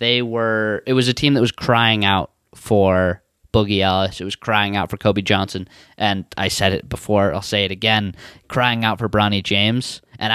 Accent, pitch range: American, 105-130 Hz